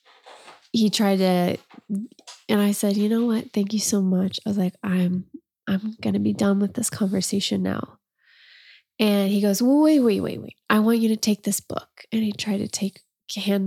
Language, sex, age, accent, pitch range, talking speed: English, female, 20-39, American, 190-220 Hz, 200 wpm